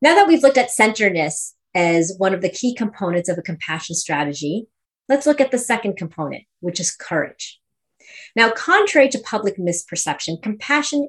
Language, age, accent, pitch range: English, 30-49, American, 170-245 Hz